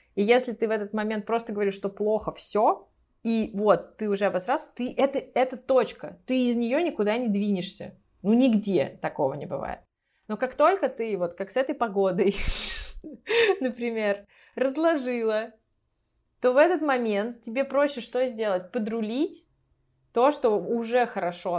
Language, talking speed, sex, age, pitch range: Russian, 150 wpm, female, 20-39, 195-245 Hz